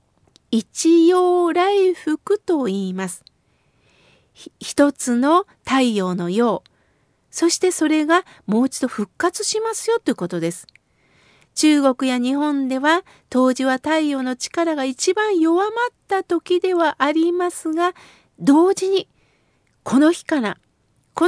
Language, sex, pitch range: Japanese, female, 270-360 Hz